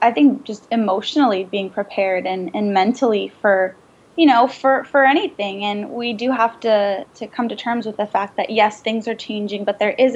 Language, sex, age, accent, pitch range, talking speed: English, female, 10-29, American, 205-235 Hz, 205 wpm